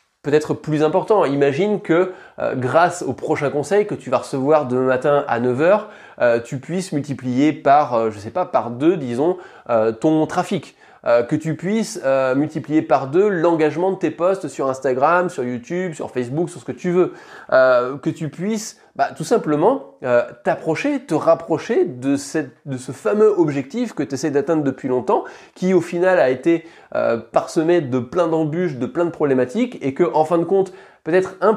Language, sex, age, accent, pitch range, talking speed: French, male, 20-39, French, 125-170 Hz, 190 wpm